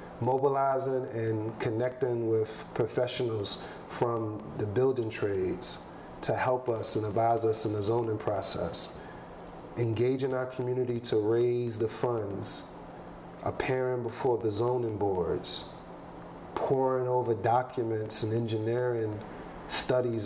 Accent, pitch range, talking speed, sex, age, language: American, 110-130 Hz, 110 wpm, male, 30-49, English